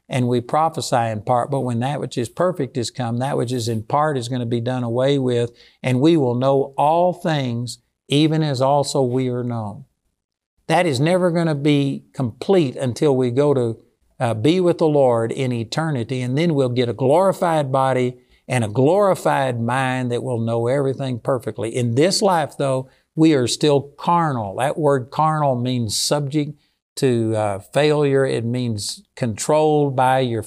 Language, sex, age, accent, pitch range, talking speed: English, male, 60-79, American, 125-150 Hz, 180 wpm